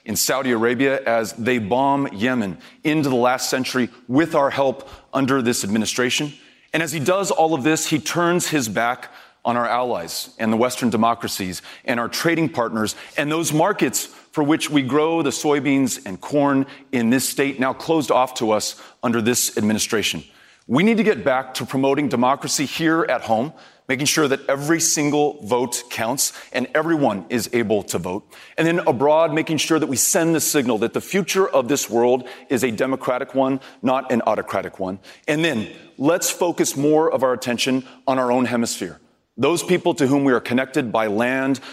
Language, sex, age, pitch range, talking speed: English, male, 30-49, 120-155 Hz, 185 wpm